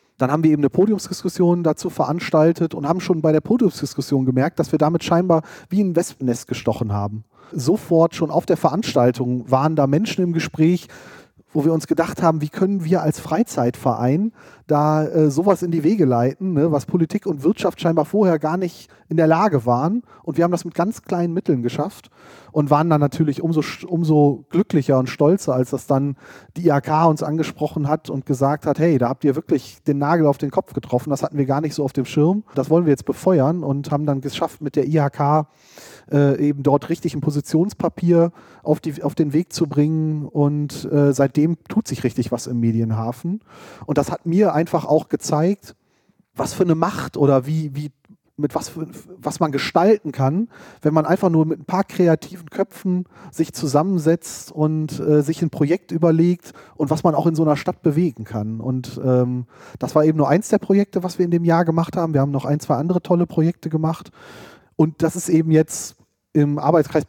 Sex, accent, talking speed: male, German, 200 wpm